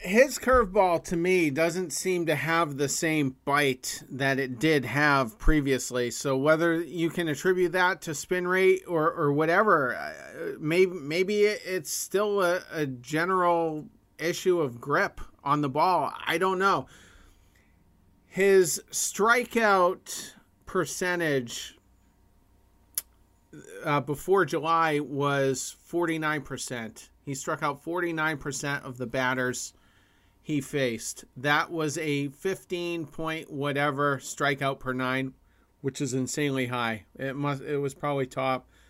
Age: 40-59